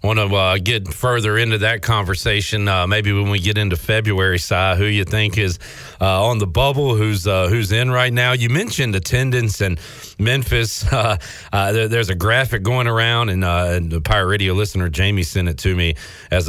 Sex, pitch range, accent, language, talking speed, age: male, 95-120 Hz, American, English, 210 wpm, 40-59